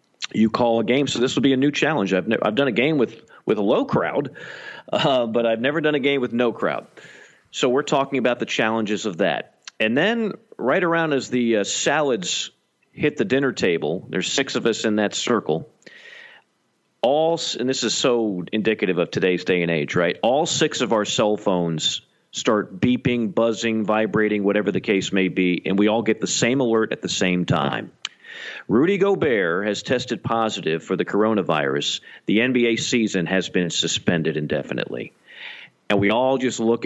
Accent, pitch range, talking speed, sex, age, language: American, 105-150 Hz, 190 wpm, male, 40-59, English